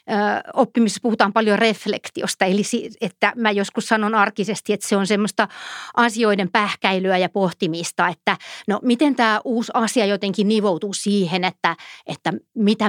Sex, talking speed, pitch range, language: female, 140 wpm, 190-225 Hz, Finnish